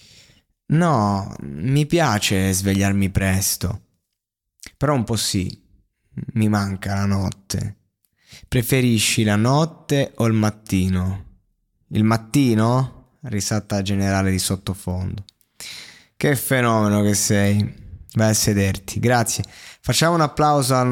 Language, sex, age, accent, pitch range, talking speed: Italian, male, 20-39, native, 100-130 Hz, 105 wpm